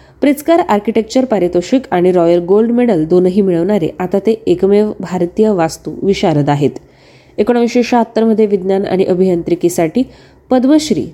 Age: 20-39